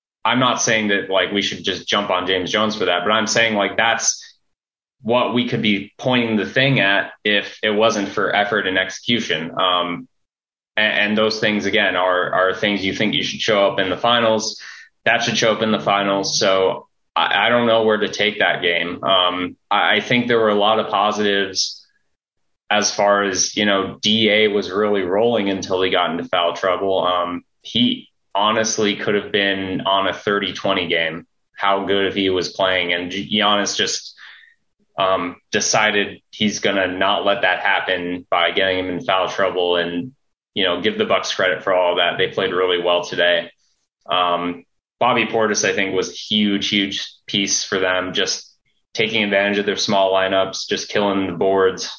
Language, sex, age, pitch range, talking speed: English, male, 20-39, 95-110 Hz, 195 wpm